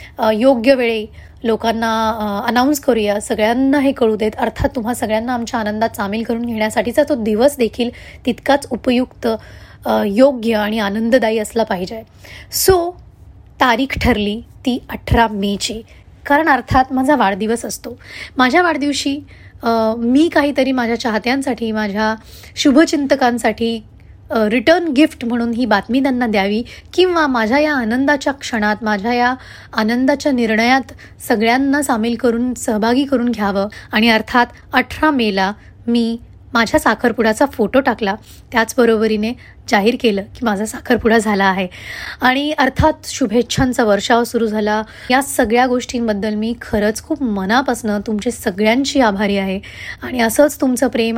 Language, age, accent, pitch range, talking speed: Marathi, 20-39, native, 220-260 Hz, 120 wpm